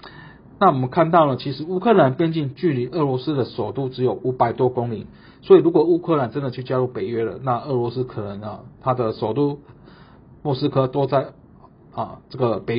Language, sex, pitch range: Chinese, male, 120-145 Hz